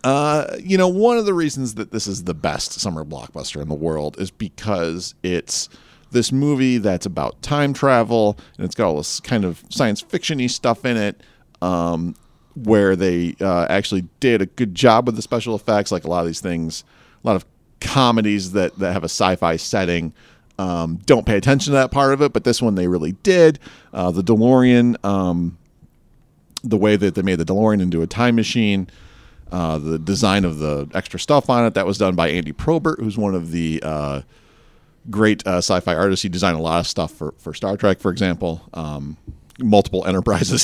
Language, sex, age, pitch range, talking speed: English, male, 40-59, 85-120 Hz, 200 wpm